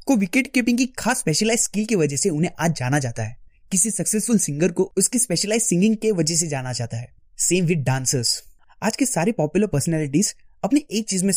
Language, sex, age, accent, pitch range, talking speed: Hindi, male, 20-39, native, 155-220 Hz, 210 wpm